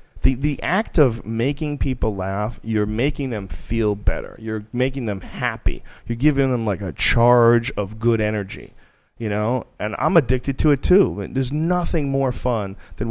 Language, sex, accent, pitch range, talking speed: English, male, American, 100-130 Hz, 175 wpm